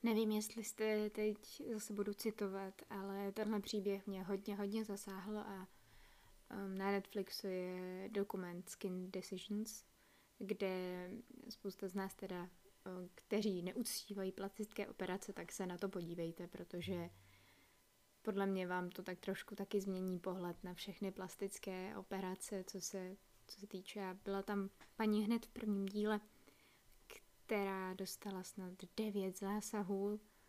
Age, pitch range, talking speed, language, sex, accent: 20-39, 190-210 Hz, 130 wpm, Czech, female, native